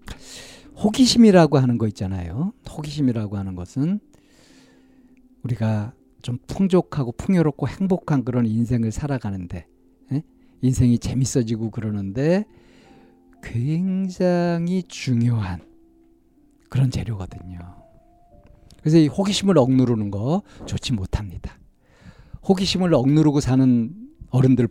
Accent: native